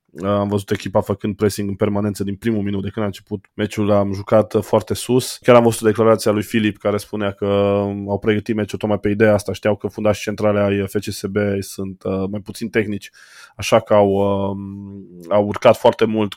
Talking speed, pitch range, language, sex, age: 190 wpm, 100-115 Hz, Romanian, male, 20-39